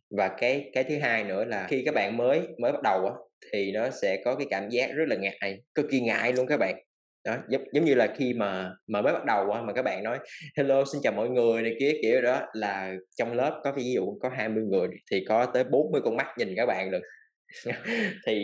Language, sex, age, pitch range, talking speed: Vietnamese, male, 20-39, 110-170 Hz, 245 wpm